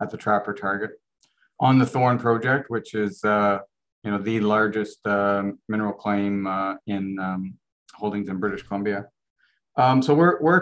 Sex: male